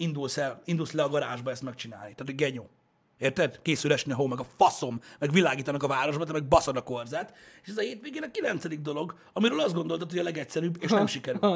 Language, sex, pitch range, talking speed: Hungarian, male, 130-175 Hz, 235 wpm